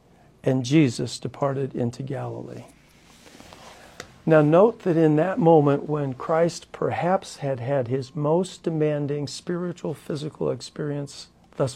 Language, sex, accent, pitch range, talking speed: English, male, American, 130-155 Hz, 115 wpm